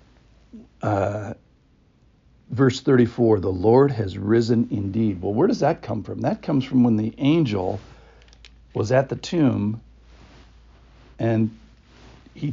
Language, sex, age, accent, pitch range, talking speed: English, male, 60-79, American, 105-125 Hz, 125 wpm